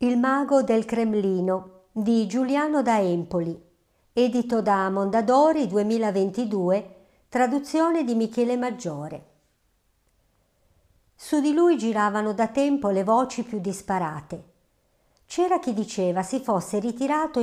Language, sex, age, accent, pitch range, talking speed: Italian, male, 50-69, native, 190-265 Hz, 110 wpm